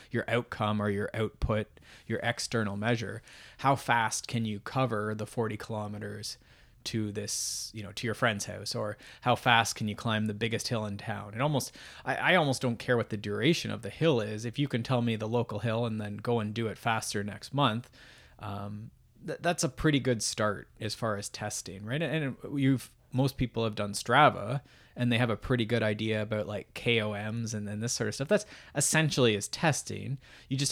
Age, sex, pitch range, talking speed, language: 20-39, male, 105-125 Hz, 205 wpm, English